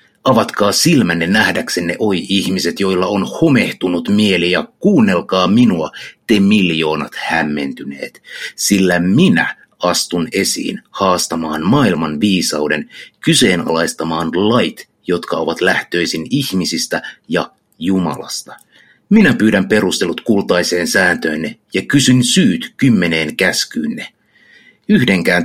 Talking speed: 95 wpm